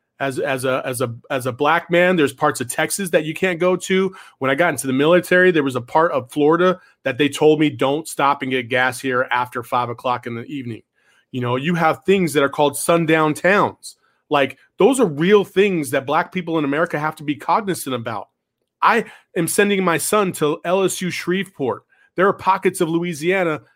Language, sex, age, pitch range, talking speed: English, male, 30-49, 130-180 Hz, 210 wpm